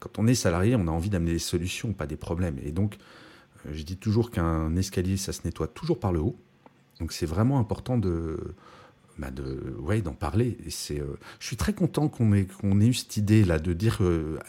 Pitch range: 90-120 Hz